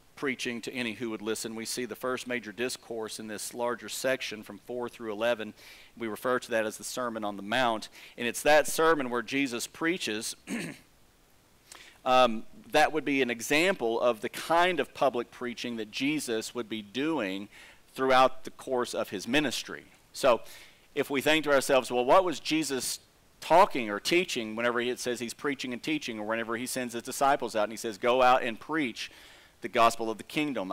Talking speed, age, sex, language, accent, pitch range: 195 wpm, 40-59, male, English, American, 110-130 Hz